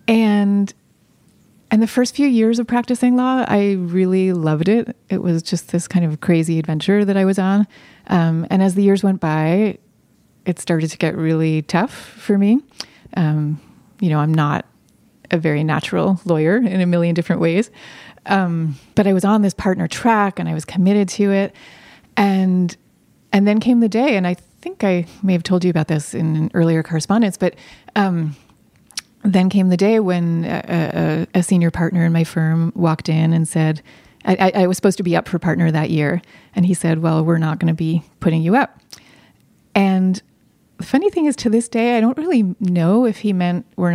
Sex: female